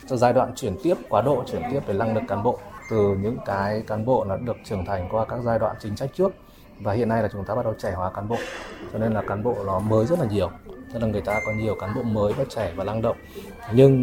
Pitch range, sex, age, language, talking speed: 105-125 Hz, male, 20-39, Vietnamese, 280 wpm